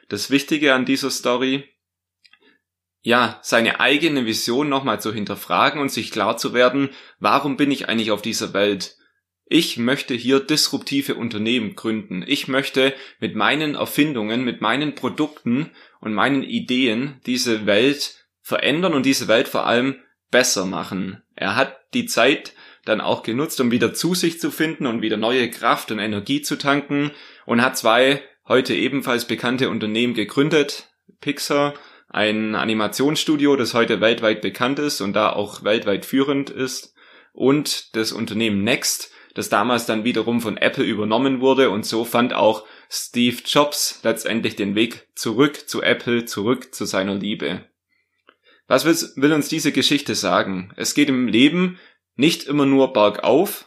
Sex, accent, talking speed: male, German, 155 wpm